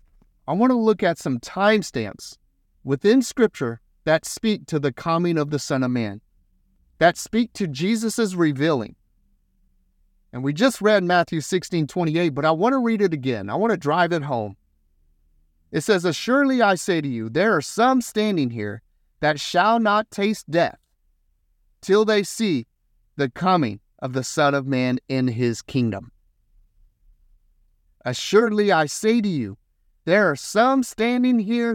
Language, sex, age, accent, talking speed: English, male, 30-49, American, 160 wpm